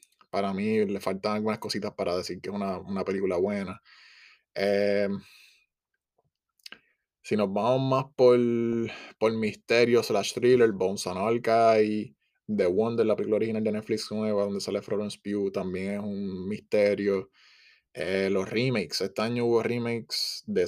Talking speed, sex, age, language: 150 wpm, male, 20-39, Spanish